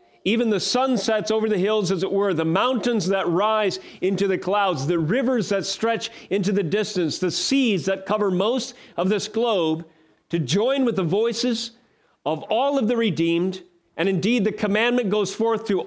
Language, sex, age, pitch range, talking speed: English, male, 40-59, 170-220 Hz, 185 wpm